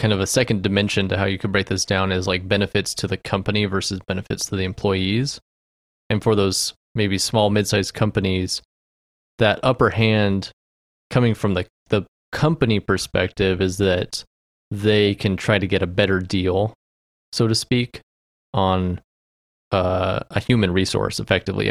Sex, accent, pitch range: male, American, 90-110 Hz